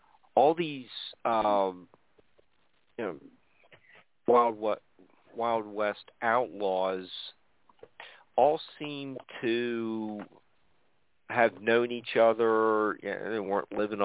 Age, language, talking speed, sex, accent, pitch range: 50-69, English, 80 wpm, male, American, 100-120 Hz